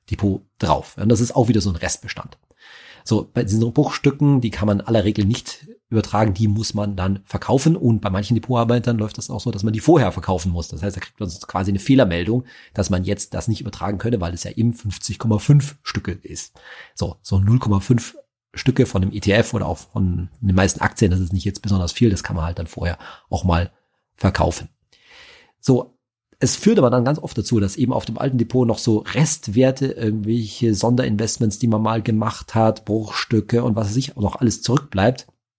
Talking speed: 205 wpm